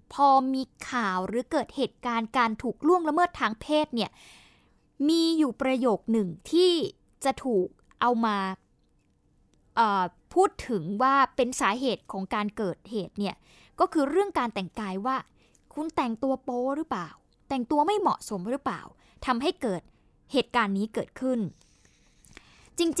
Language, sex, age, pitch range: Thai, female, 20-39, 215-285 Hz